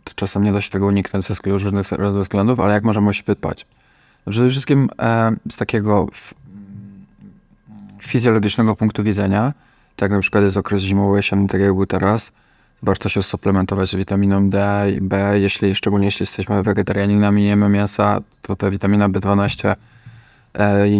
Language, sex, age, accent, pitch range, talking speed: Polish, male, 20-39, native, 100-105 Hz, 165 wpm